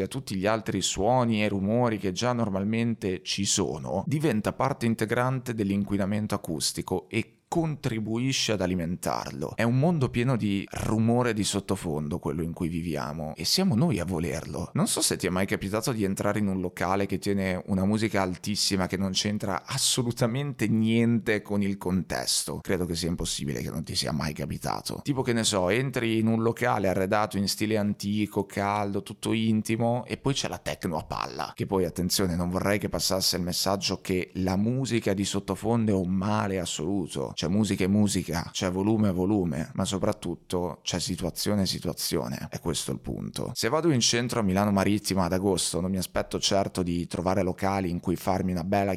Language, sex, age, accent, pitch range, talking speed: Italian, male, 30-49, native, 95-110 Hz, 185 wpm